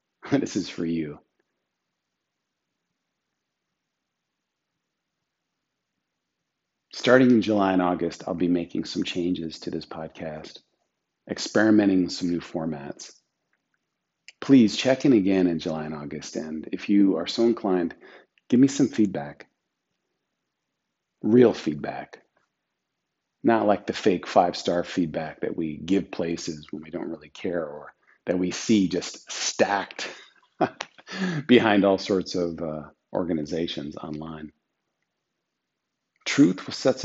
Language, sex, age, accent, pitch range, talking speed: English, male, 40-59, American, 85-105 Hz, 115 wpm